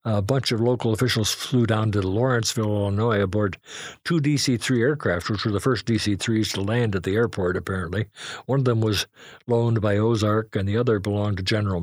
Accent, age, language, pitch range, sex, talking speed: American, 50-69, English, 100-120 Hz, male, 195 wpm